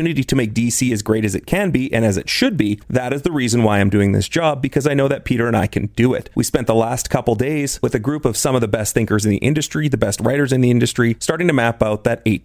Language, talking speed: English, 305 wpm